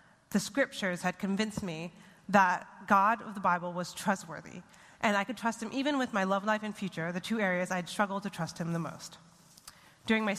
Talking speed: 210 wpm